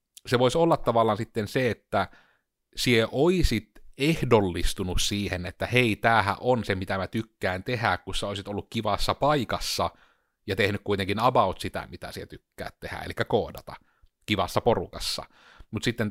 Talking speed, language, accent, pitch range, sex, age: 155 wpm, Finnish, native, 95-120 Hz, male, 30-49